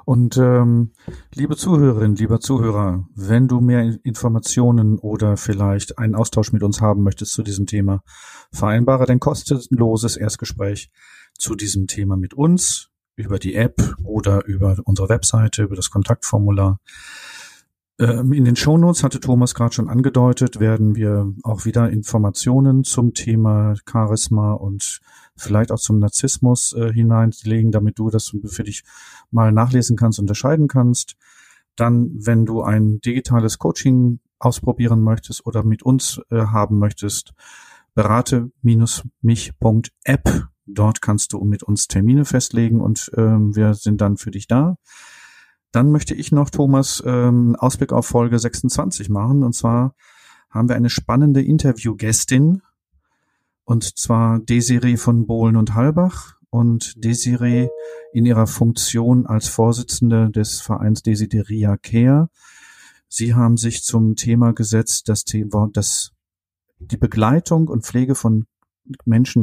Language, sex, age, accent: German, male, 40-59, German